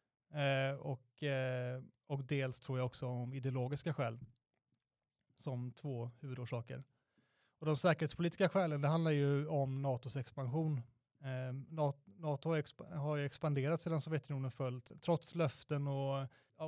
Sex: male